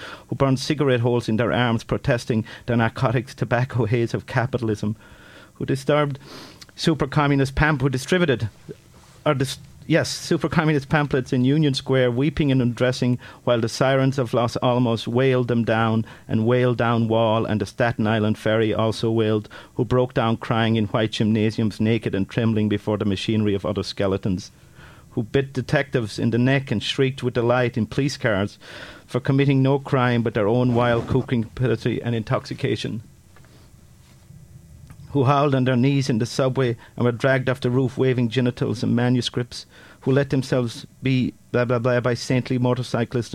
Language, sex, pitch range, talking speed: English, male, 115-135 Hz, 165 wpm